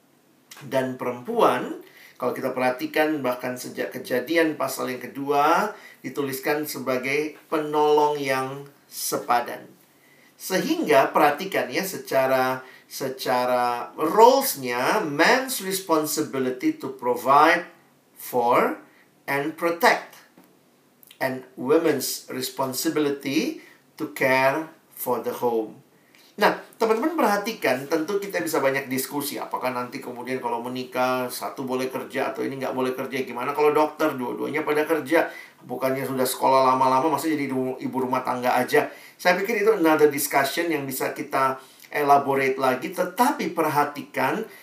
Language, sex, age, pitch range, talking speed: Indonesian, male, 50-69, 130-165 Hz, 115 wpm